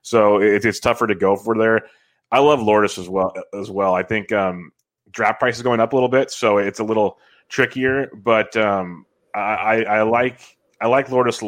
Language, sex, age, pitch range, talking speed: English, male, 30-49, 105-125 Hz, 210 wpm